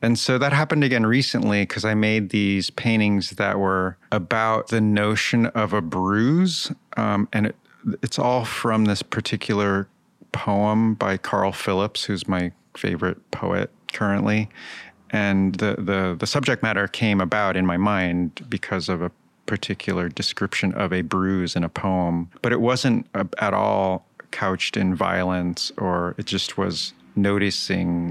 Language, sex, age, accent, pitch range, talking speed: English, male, 30-49, American, 95-115 Hz, 145 wpm